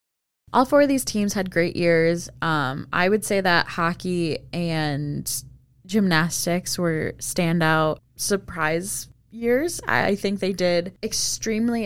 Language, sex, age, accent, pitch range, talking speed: English, female, 10-29, American, 155-205 Hz, 125 wpm